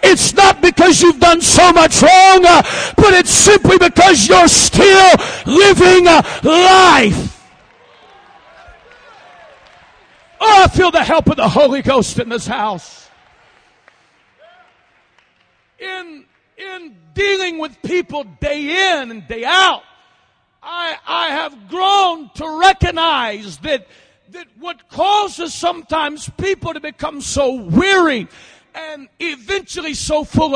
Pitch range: 285-360 Hz